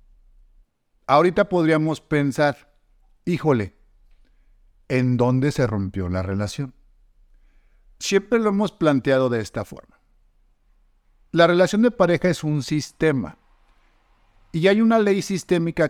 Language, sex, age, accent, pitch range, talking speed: Spanish, male, 50-69, Mexican, 115-155 Hz, 110 wpm